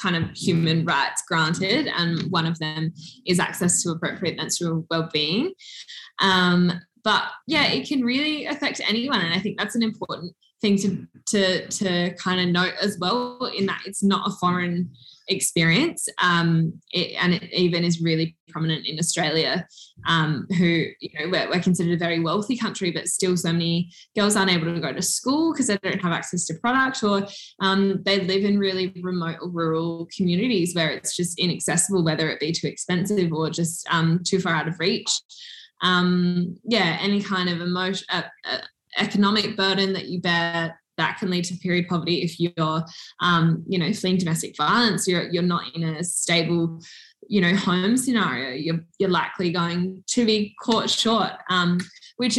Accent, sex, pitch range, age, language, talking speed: Australian, female, 170-200 Hz, 10-29, English, 180 wpm